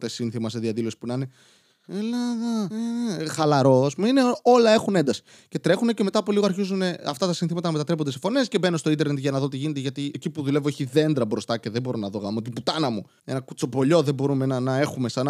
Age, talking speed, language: 20-39, 240 wpm, Greek